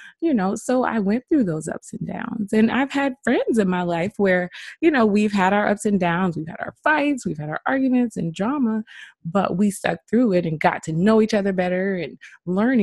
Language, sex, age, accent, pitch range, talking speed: English, female, 20-39, American, 170-220 Hz, 235 wpm